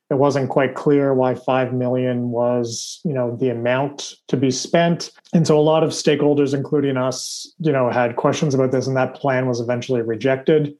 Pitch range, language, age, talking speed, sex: 130-155 Hz, English, 30-49, 195 wpm, male